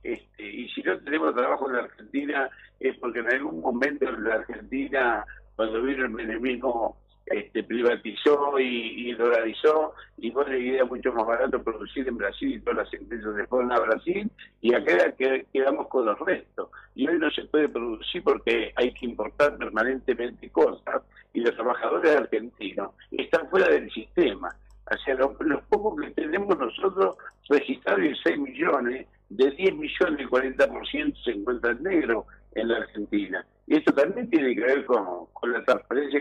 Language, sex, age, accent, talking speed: Spanish, male, 60-79, Argentinian, 170 wpm